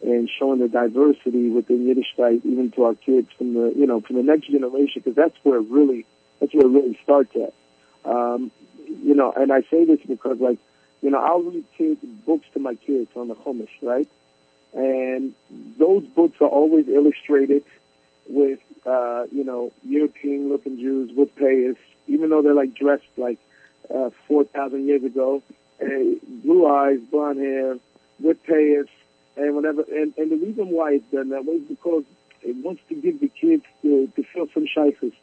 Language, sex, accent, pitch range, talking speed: English, male, American, 125-155 Hz, 180 wpm